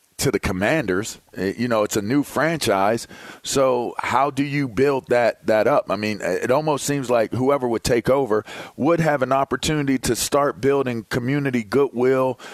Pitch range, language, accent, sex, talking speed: 110-135 Hz, English, American, male, 170 wpm